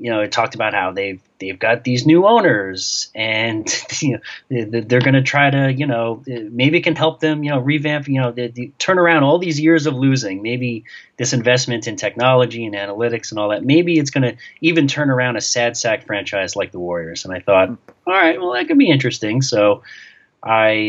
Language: English